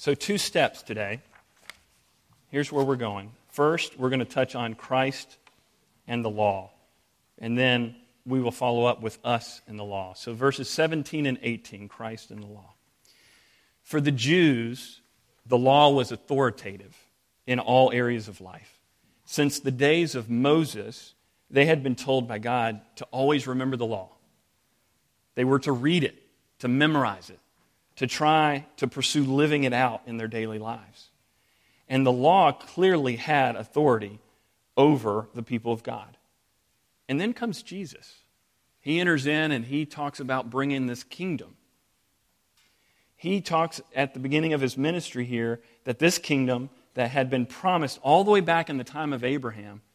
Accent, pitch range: American, 115-145 Hz